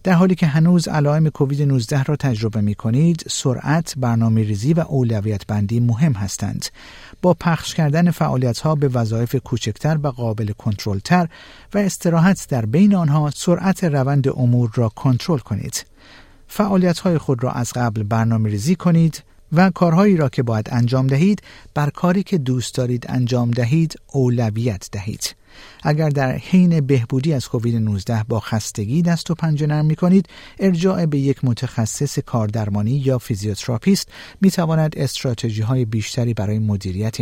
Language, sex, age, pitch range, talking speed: Persian, male, 50-69, 115-160 Hz, 150 wpm